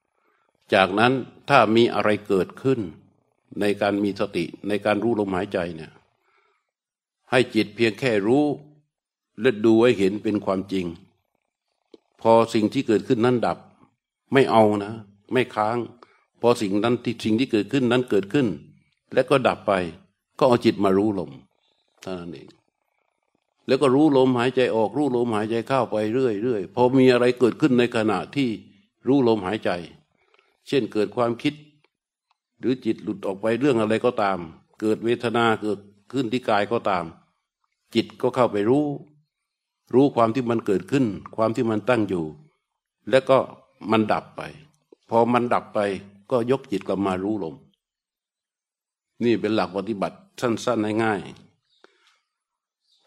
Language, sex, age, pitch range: Thai, male, 60-79, 100-125 Hz